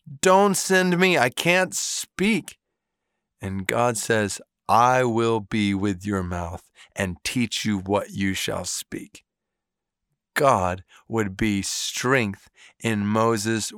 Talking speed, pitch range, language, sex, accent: 120 wpm, 95-125 Hz, English, male, American